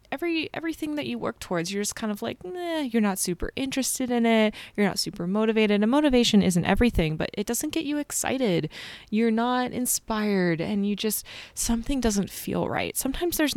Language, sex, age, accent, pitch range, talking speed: English, female, 20-39, American, 170-240 Hz, 190 wpm